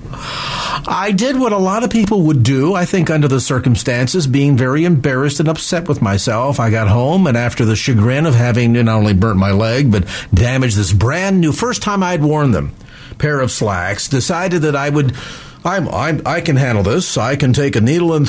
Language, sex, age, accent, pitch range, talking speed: English, male, 50-69, American, 115-145 Hz, 210 wpm